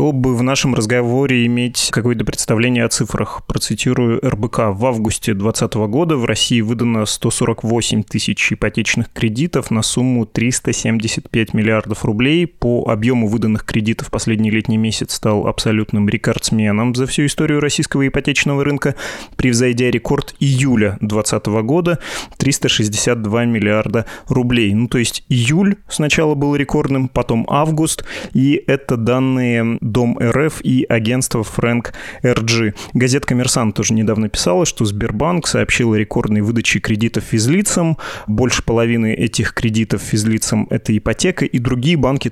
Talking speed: 130 wpm